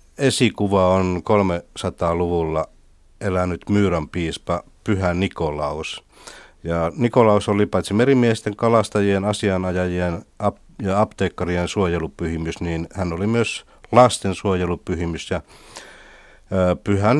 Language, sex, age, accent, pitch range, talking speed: Finnish, male, 60-79, native, 85-105 Hz, 90 wpm